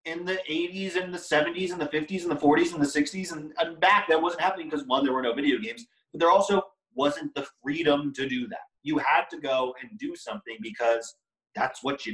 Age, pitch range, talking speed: 30-49, 120-190 Hz, 235 wpm